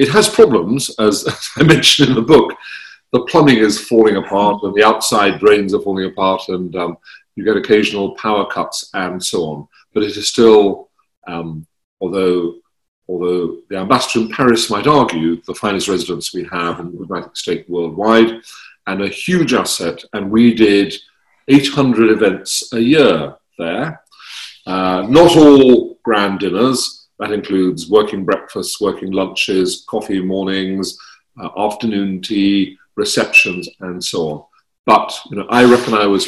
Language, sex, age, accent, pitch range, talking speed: English, male, 40-59, British, 95-115 Hz, 155 wpm